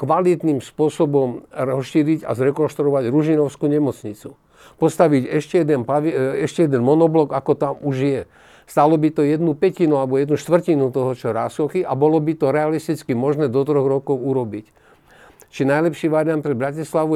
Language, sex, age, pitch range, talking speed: Slovak, male, 50-69, 130-155 Hz, 155 wpm